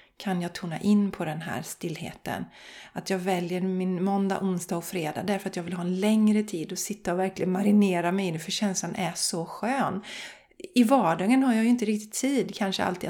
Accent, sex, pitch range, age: native, female, 180-220 Hz, 30-49